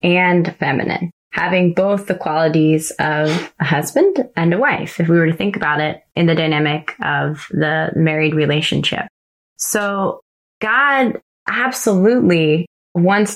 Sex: female